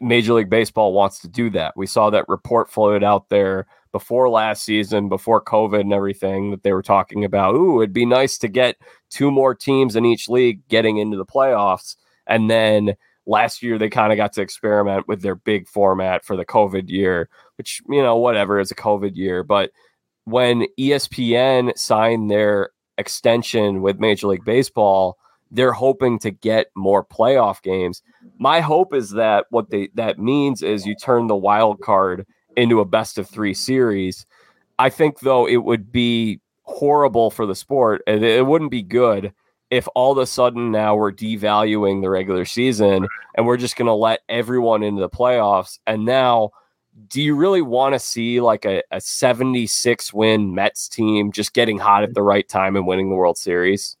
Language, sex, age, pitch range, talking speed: English, male, 20-39, 100-120 Hz, 185 wpm